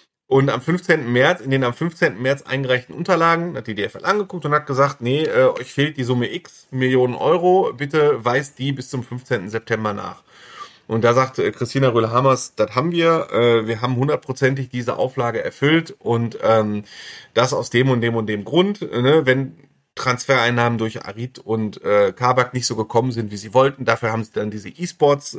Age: 30-49